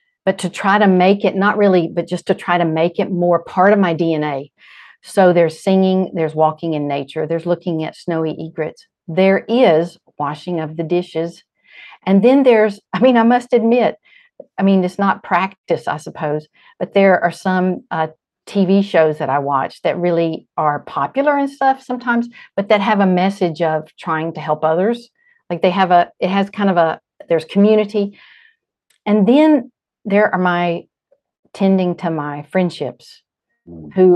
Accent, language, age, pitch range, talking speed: American, English, 50-69, 160-200 Hz, 175 wpm